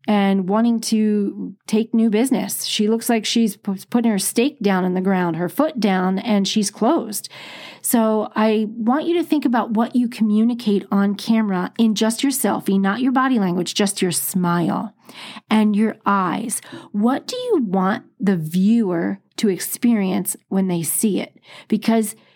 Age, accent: 40-59, American